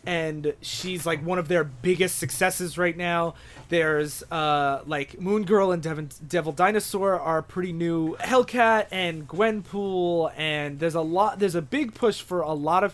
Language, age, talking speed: English, 20-39, 165 wpm